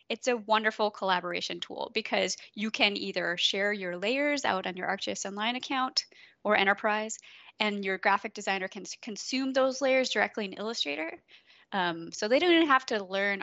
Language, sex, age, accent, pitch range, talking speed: English, female, 20-39, American, 195-250 Hz, 175 wpm